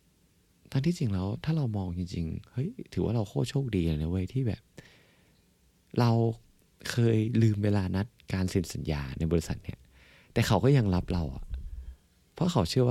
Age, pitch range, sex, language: 20-39, 85-120 Hz, male, Thai